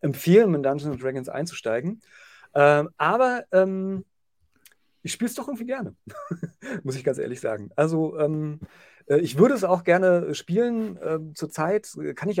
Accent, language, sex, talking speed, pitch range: German, German, male, 150 wpm, 135-180 Hz